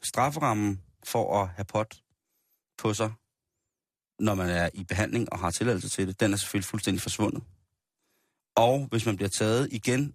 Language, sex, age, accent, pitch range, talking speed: Danish, male, 30-49, native, 100-120 Hz, 165 wpm